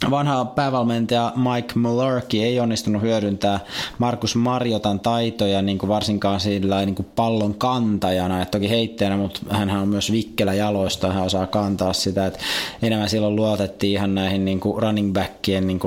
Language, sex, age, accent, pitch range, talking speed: Finnish, male, 20-39, native, 100-115 Hz, 150 wpm